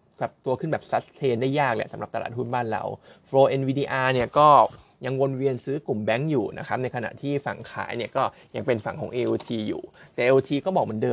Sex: male